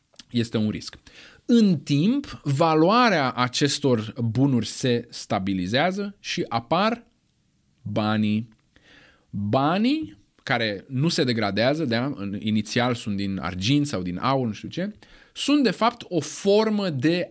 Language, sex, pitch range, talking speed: Romanian, male, 115-160 Hz, 120 wpm